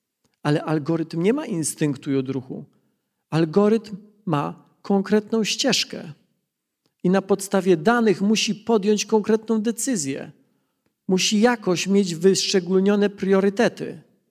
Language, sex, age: Polish, male, 40-59